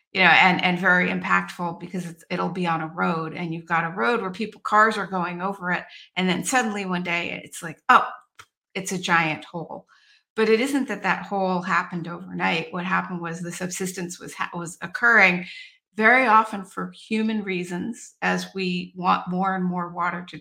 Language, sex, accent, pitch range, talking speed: English, female, American, 170-195 Hz, 190 wpm